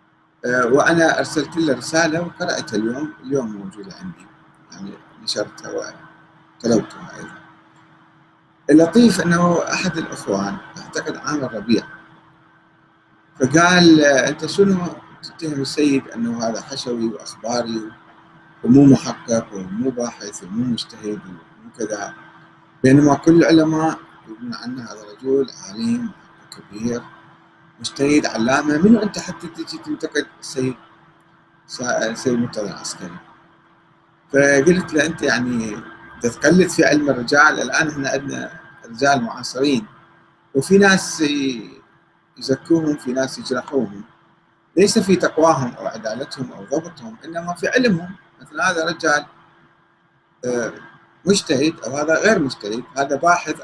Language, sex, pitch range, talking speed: Arabic, male, 125-170 Hz, 110 wpm